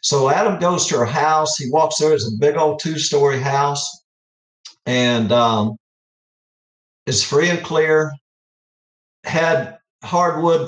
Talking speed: 130 wpm